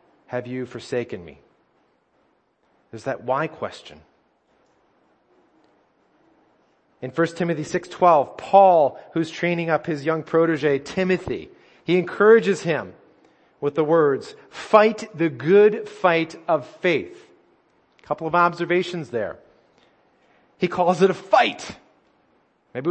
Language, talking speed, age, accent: English, 110 wpm, 30-49, American